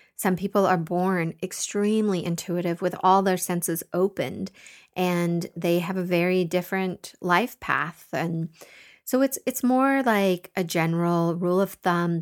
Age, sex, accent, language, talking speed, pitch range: 30-49, female, American, English, 145 wpm, 170-195 Hz